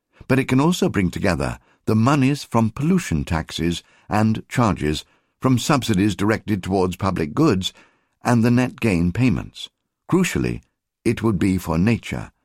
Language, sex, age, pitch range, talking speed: English, male, 60-79, 85-120 Hz, 145 wpm